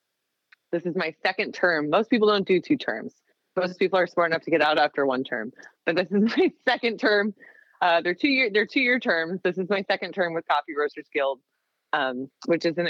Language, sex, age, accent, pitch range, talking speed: English, female, 20-39, American, 140-195 Hz, 220 wpm